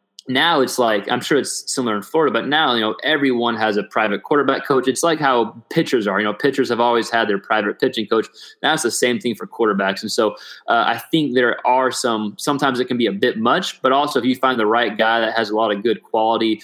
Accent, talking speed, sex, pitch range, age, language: American, 255 wpm, male, 105-125 Hz, 20-39, English